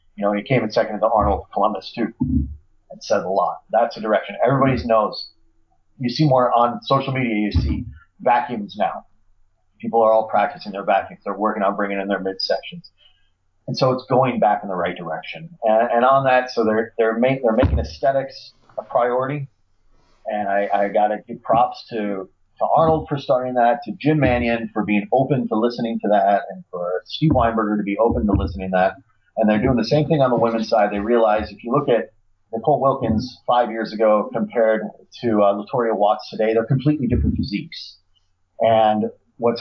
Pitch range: 100-125 Hz